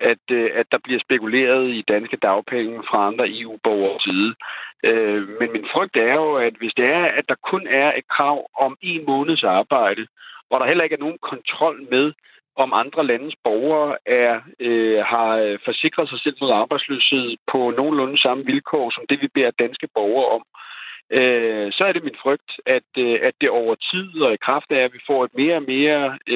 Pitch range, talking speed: 115-155 Hz, 185 wpm